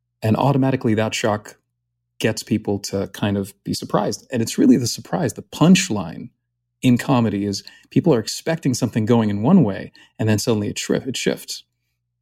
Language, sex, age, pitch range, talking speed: English, male, 30-49, 105-125 Hz, 170 wpm